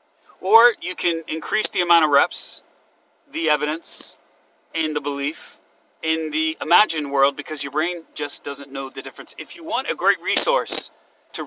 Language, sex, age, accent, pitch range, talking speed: English, male, 30-49, American, 145-185 Hz, 165 wpm